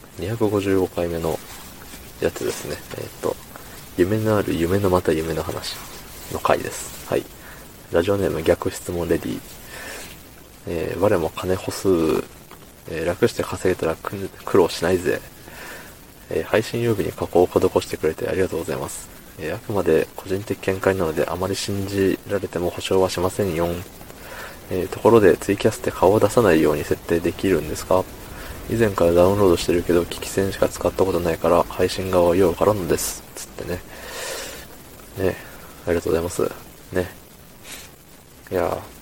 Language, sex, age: Japanese, male, 20-39